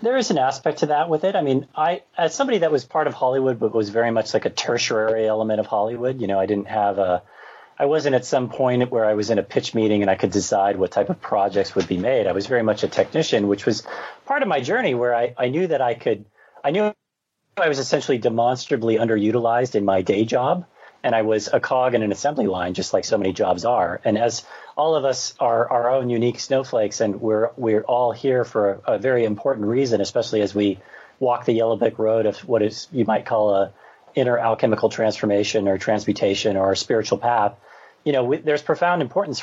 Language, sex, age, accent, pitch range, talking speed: English, male, 40-59, American, 110-140 Hz, 235 wpm